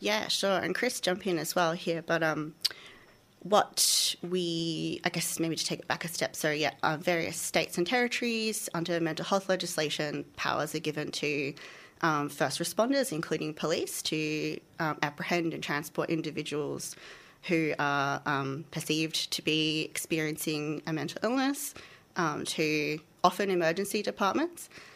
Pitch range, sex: 155-180 Hz, female